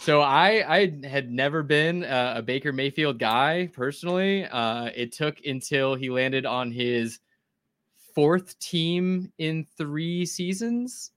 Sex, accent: male, American